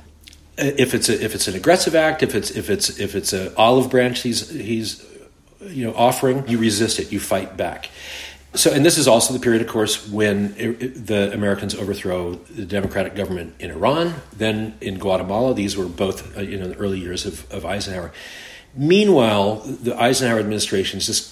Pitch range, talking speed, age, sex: 100-120 Hz, 190 wpm, 40-59, male